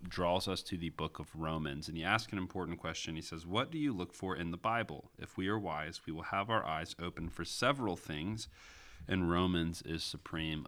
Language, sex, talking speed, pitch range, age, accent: English, male, 225 wpm, 80-90 Hz, 30-49, American